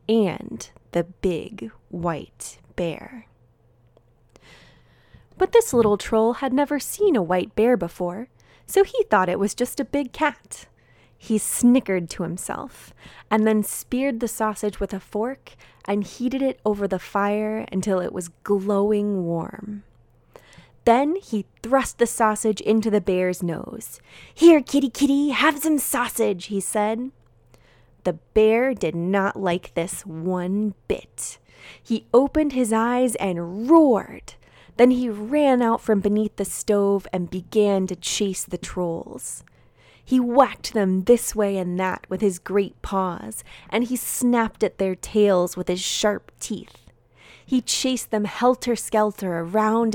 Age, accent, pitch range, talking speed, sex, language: 20-39, American, 185-245 Hz, 145 wpm, female, English